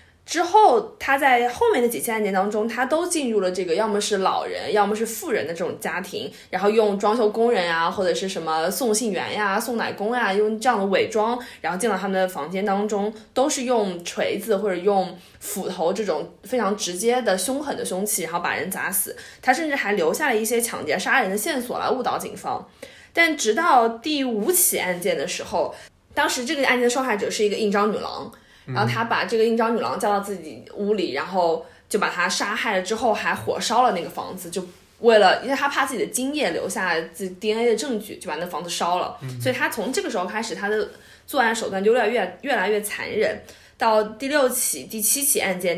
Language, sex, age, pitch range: Chinese, female, 20-39, 190-245 Hz